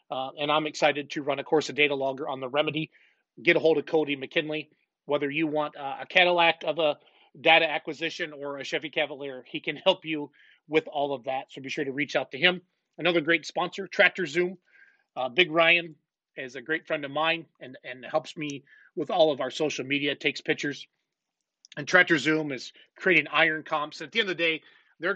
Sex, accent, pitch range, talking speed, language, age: male, American, 140-165 Hz, 215 wpm, English, 30-49